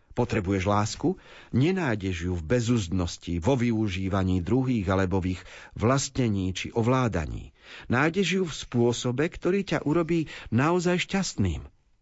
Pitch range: 100-140 Hz